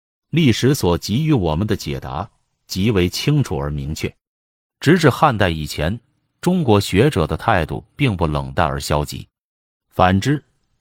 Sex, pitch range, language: male, 85-125 Hz, Chinese